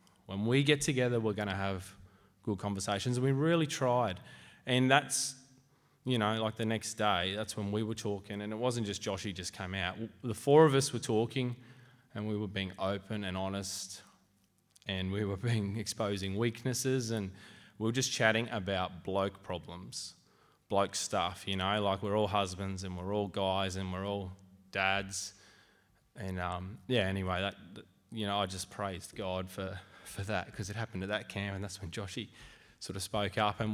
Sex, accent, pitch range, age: male, Australian, 95-125 Hz, 20-39